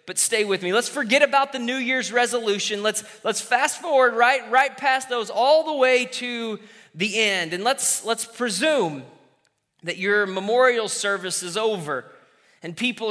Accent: American